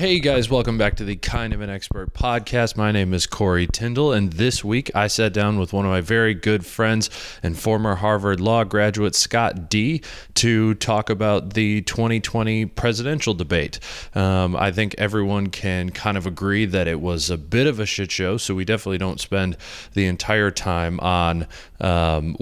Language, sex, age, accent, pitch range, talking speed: English, male, 30-49, American, 90-110 Hz, 185 wpm